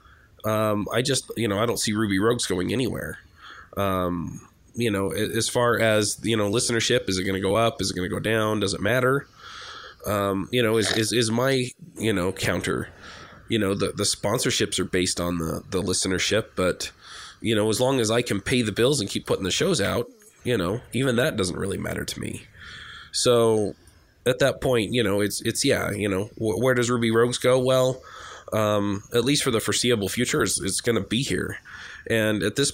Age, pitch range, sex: 20-39, 95-115 Hz, male